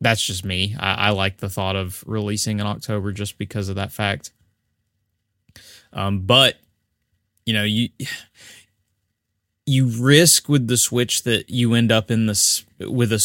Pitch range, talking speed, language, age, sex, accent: 100-115 Hz, 160 wpm, English, 20-39, male, American